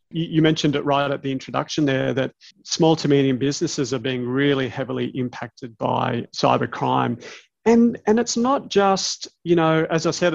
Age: 30-49